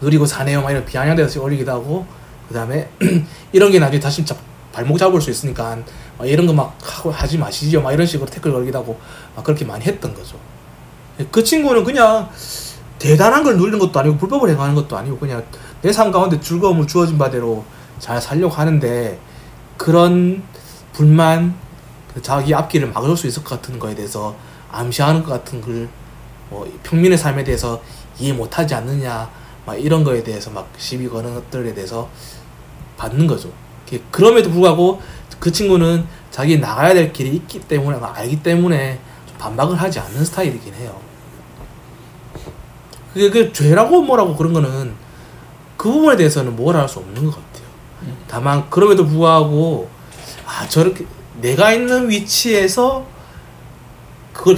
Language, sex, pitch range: Korean, male, 125-170 Hz